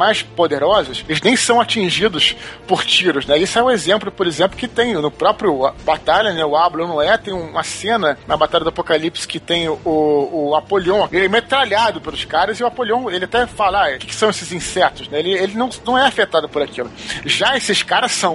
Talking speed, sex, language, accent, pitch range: 220 wpm, male, Portuguese, Brazilian, 160-220 Hz